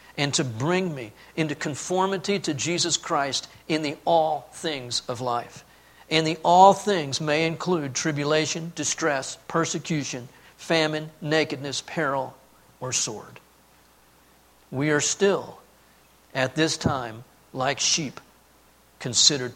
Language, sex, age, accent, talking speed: English, male, 50-69, American, 115 wpm